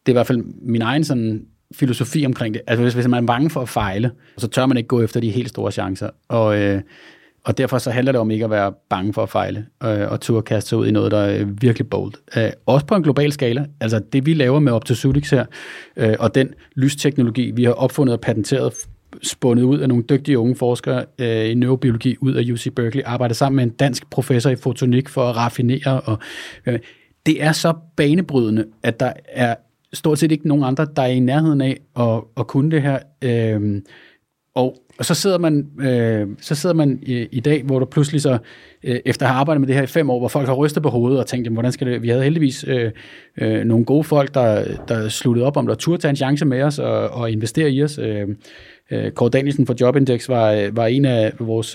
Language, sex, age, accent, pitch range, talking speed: Danish, male, 30-49, native, 115-140 Hz, 230 wpm